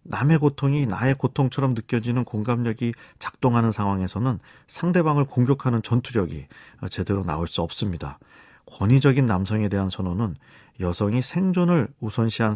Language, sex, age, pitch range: Korean, male, 40-59, 95-140 Hz